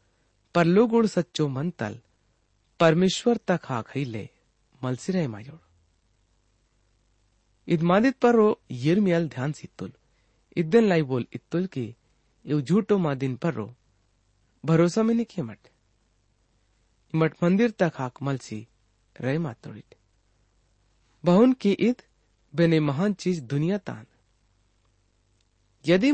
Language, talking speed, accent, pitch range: English, 105 wpm, Indian, 110-175 Hz